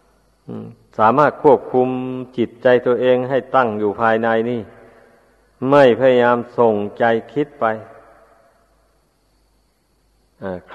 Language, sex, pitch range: Thai, male, 115-140 Hz